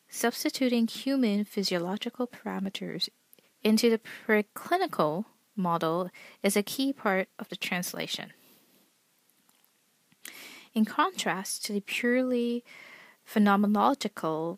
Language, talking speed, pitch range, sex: English, 85 wpm, 185-235 Hz, female